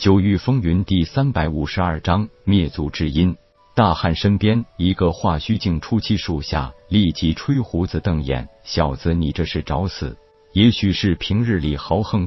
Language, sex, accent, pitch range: Chinese, male, native, 75-100 Hz